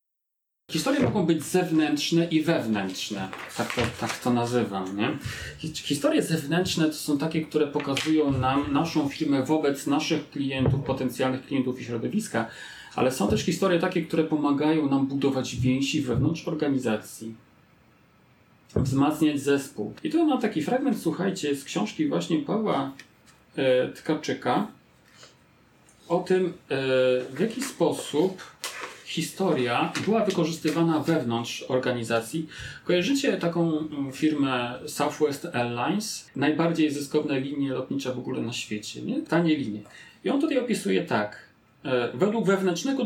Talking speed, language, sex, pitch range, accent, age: 120 wpm, Polish, male, 135-175 Hz, native, 40-59